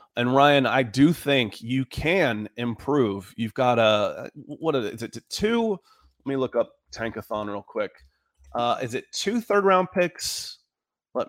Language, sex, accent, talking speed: English, male, American, 170 wpm